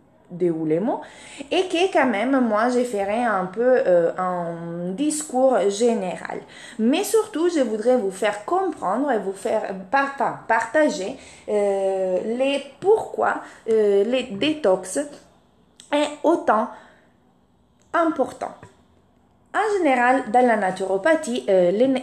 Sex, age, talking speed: female, 20-39, 120 wpm